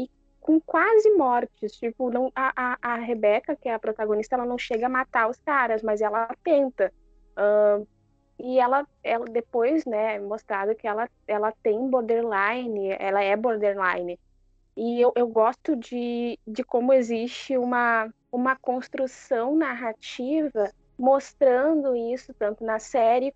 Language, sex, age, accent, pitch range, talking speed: Portuguese, female, 10-29, Brazilian, 225-275 Hz, 145 wpm